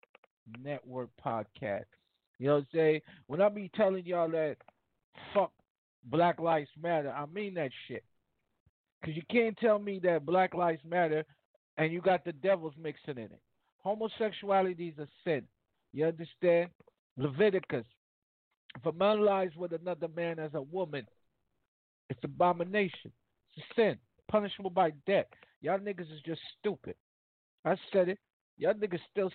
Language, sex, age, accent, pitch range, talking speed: English, male, 50-69, American, 155-195 Hz, 150 wpm